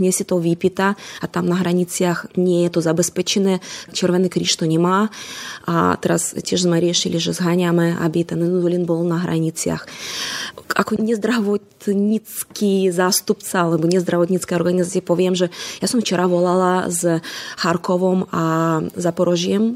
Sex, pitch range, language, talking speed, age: female, 170-190 Hz, Slovak, 135 wpm, 20-39